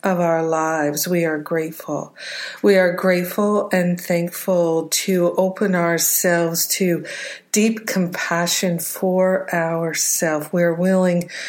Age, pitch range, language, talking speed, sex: 50-69, 170-190 Hz, English, 110 wpm, female